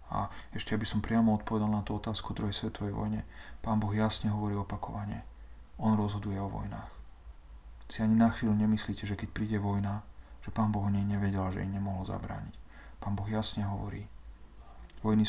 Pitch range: 90-110 Hz